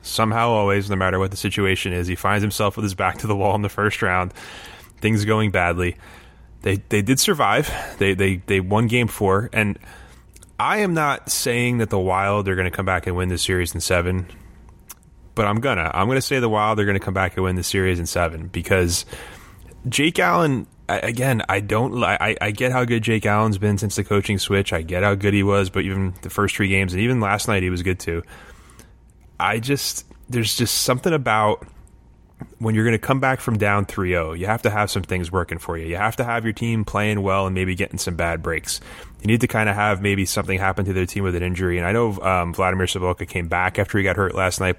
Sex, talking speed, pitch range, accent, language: male, 235 wpm, 90-110 Hz, American, English